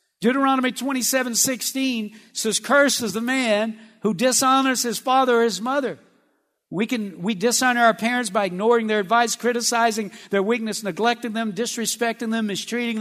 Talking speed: 150 wpm